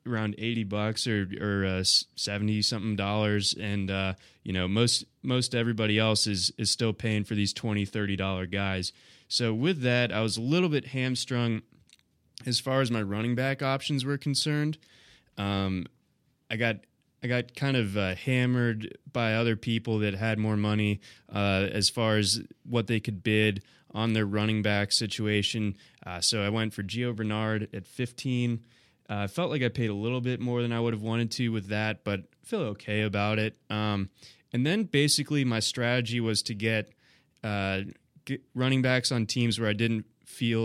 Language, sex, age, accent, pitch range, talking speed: English, male, 20-39, American, 105-120 Hz, 185 wpm